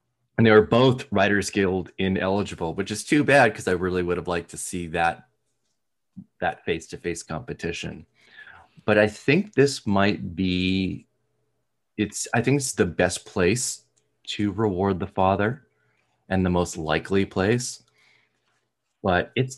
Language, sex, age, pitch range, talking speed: English, male, 30-49, 80-100 Hz, 145 wpm